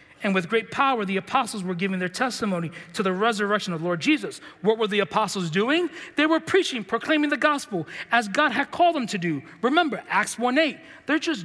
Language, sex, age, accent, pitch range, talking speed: English, male, 40-59, American, 190-280 Hz, 210 wpm